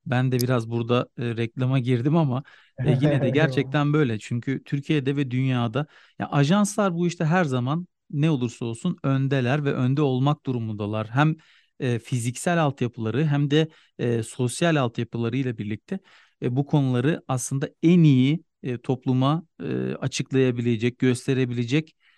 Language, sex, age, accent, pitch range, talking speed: Turkish, male, 40-59, native, 125-155 Hz, 145 wpm